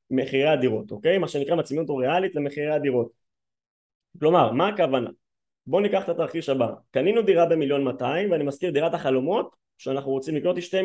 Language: Hebrew